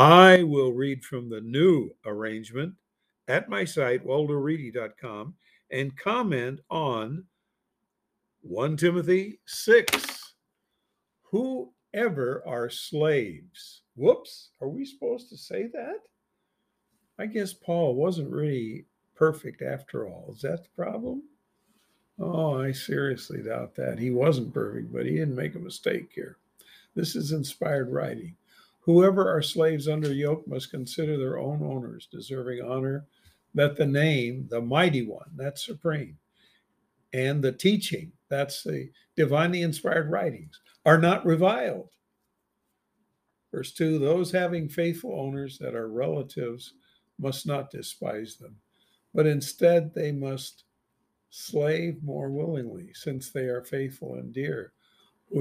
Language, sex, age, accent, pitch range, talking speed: English, male, 50-69, American, 130-175 Hz, 125 wpm